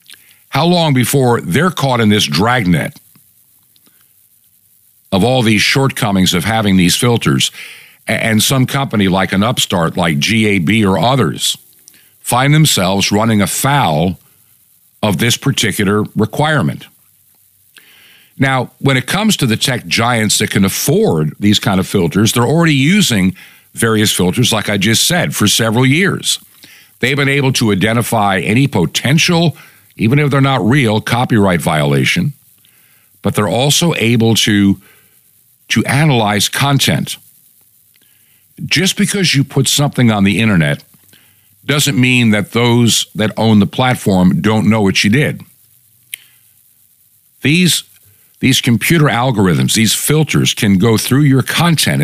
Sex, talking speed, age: male, 135 wpm, 50-69